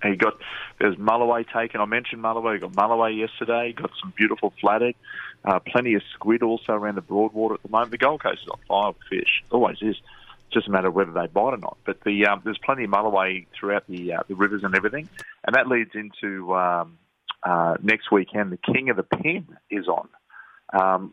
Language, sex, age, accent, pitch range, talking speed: English, male, 30-49, Australian, 95-115 Hz, 215 wpm